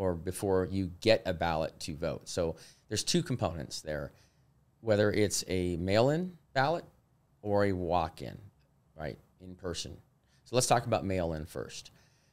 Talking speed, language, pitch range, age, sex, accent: 145 wpm, English, 90-120 Hz, 30-49, male, American